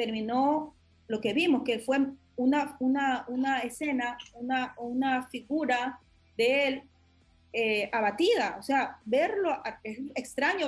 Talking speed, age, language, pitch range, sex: 130 wpm, 30-49, Spanish, 245-300 Hz, female